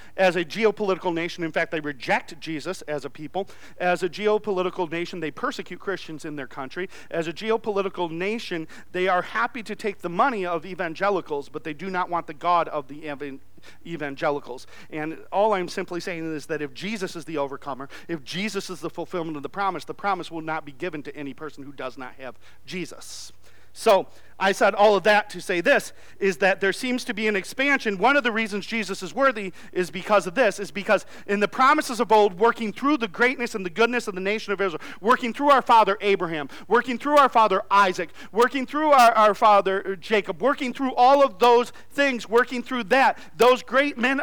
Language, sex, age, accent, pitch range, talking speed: English, male, 50-69, American, 175-245 Hz, 210 wpm